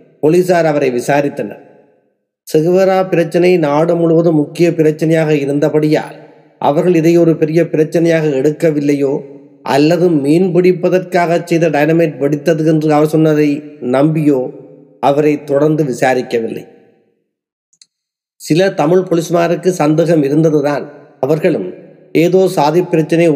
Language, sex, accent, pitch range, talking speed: Tamil, male, native, 135-165 Hz, 95 wpm